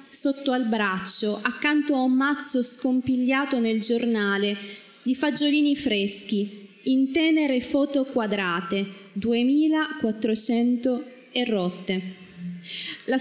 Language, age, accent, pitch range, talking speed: Italian, 20-39, native, 200-255 Hz, 95 wpm